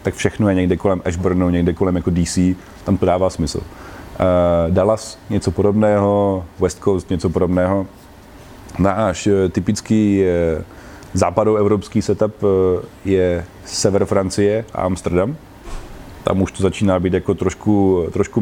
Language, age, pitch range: Czech, 30-49, 90-100 Hz